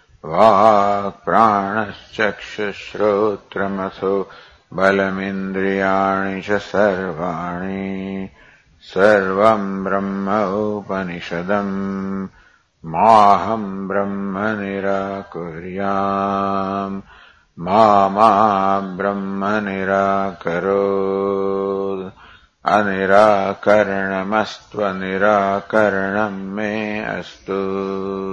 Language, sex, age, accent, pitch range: English, male, 50-69, Indian, 95-100 Hz